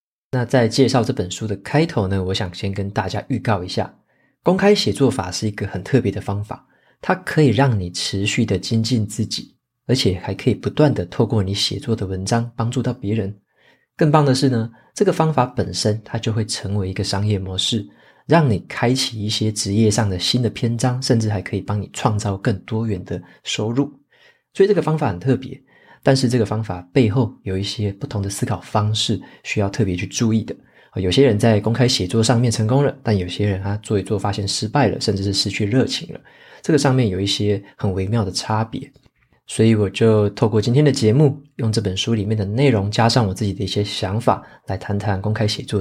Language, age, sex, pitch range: Chinese, 20-39, male, 100-130 Hz